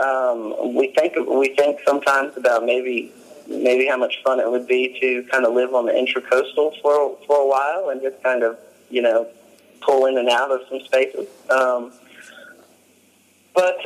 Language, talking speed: English, 180 wpm